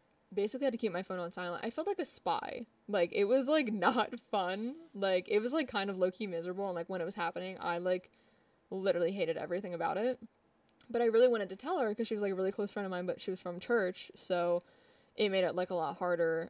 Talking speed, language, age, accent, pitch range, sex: 255 wpm, English, 20-39, American, 180-230 Hz, female